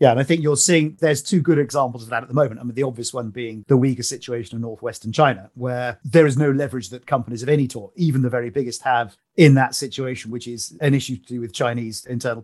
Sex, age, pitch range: male, 40-59, 125-145 Hz